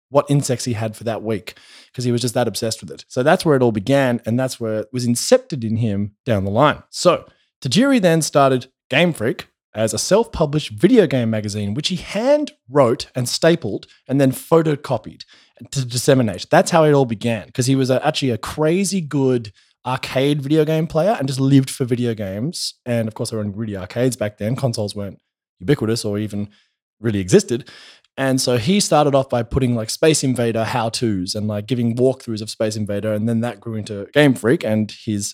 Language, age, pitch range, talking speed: English, 20-39, 110-145 Hz, 205 wpm